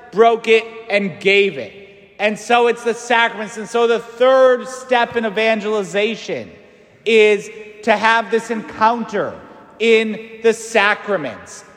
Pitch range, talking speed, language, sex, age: 225-270 Hz, 130 wpm, English, male, 30-49